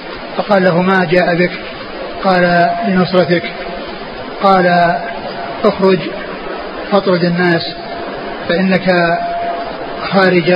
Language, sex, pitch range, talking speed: Arabic, male, 175-195 Hz, 75 wpm